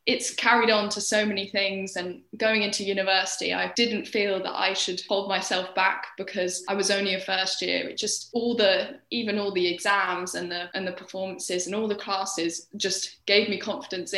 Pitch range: 190-215 Hz